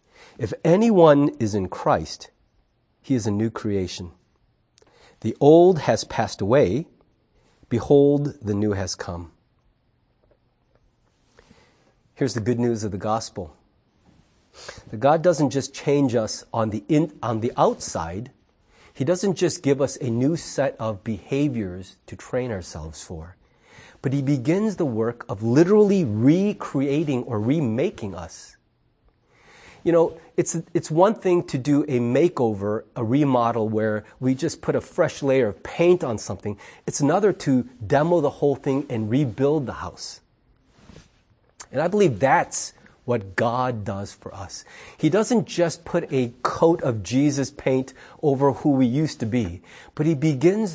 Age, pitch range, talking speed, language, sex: 40-59, 110-160 Hz, 145 wpm, English, male